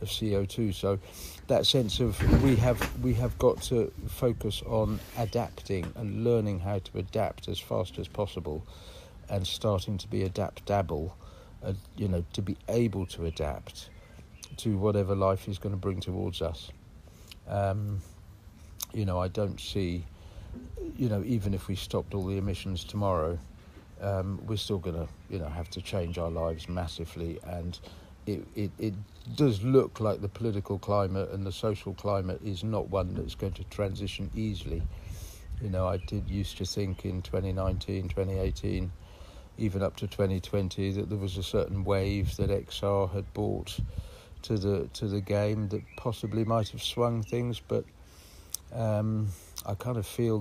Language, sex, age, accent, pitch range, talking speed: English, male, 50-69, British, 90-105 Hz, 165 wpm